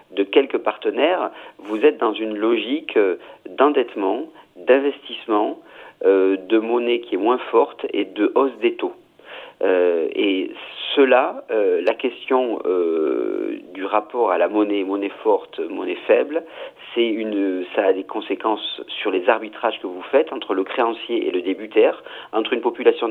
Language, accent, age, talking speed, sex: French, French, 40-59, 155 wpm, male